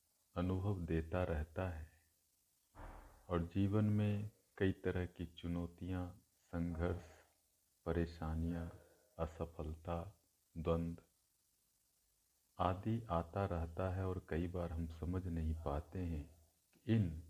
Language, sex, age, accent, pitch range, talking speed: Hindi, male, 50-69, native, 80-95 Hz, 95 wpm